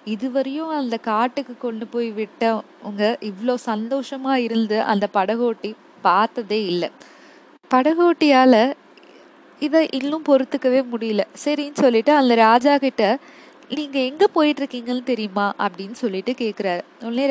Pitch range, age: 225-290 Hz, 20-39